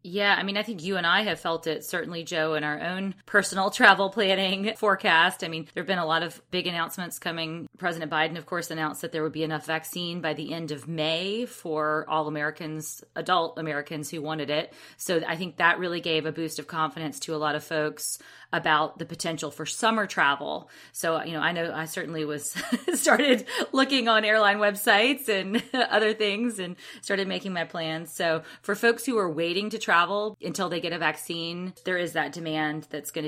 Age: 30-49